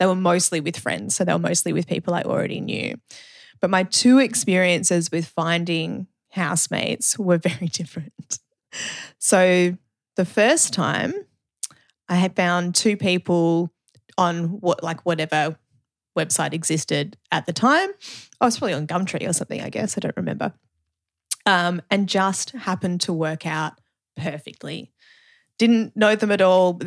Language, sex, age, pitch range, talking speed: English, female, 20-39, 170-200 Hz, 150 wpm